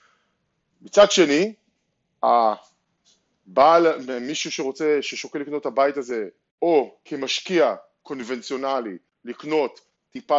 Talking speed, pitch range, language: 85 wpm, 120-175 Hz, Hebrew